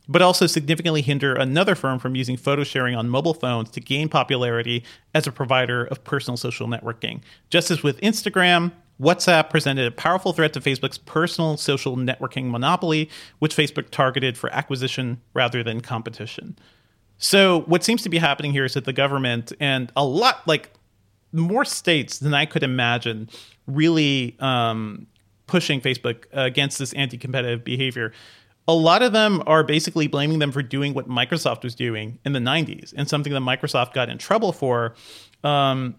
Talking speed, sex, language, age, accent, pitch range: 170 wpm, male, English, 40-59, American, 125-155 Hz